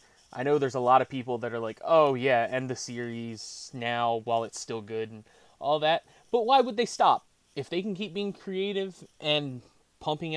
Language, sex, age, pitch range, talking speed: English, male, 20-39, 120-165 Hz, 210 wpm